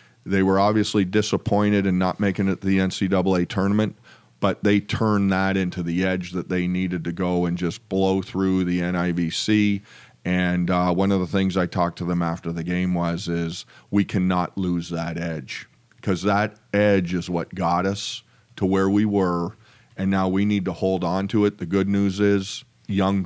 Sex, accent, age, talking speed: male, American, 40-59, 195 wpm